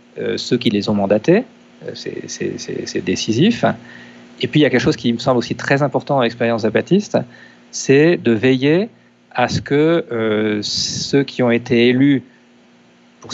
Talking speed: 175 wpm